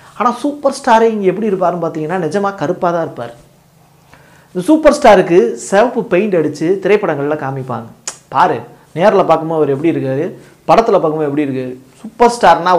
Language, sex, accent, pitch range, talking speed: Tamil, male, native, 145-195 Hz, 145 wpm